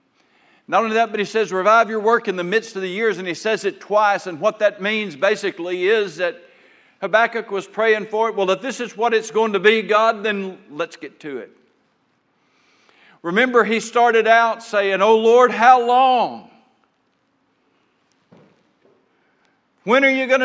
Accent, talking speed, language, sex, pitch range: American, 175 wpm, English, male, 165-225 Hz